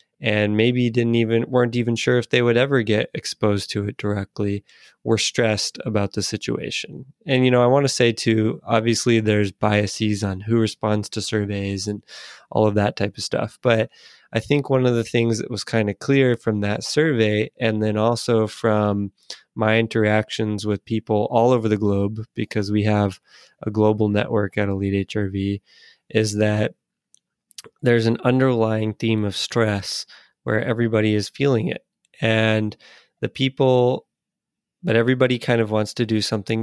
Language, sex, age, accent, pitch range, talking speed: English, male, 20-39, American, 105-120 Hz, 170 wpm